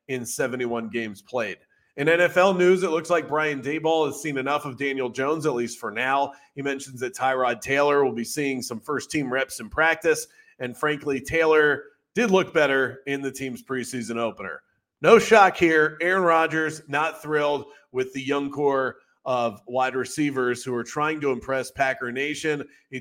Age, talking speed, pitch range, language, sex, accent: 30-49, 180 wpm, 130-155 Hz, English, male, American